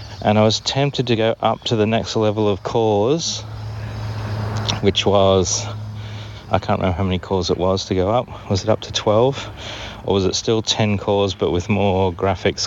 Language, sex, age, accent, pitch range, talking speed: English, male, 30-49, Australian, 95-110 Hz, 195 wpm